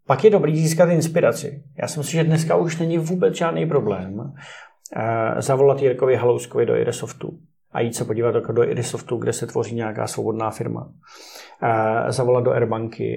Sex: male